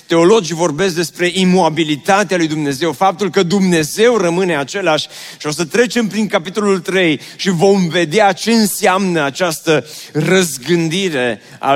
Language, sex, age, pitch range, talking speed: Romanian, male, 30-49, 140-180 Hz, 135 wpm